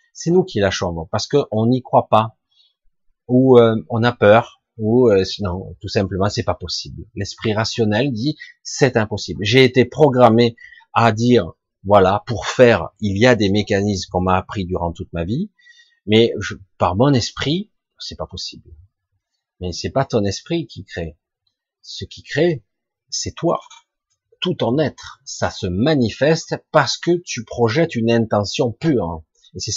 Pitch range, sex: 95-130 Hz, male